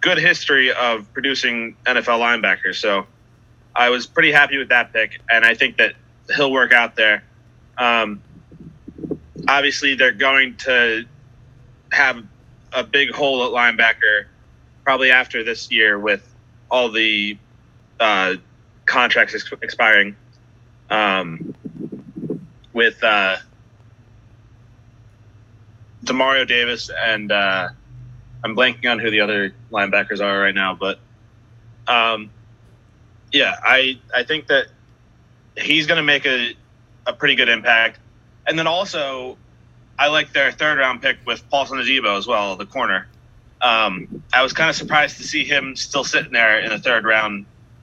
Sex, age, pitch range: male, 20-39, 110-130 Hz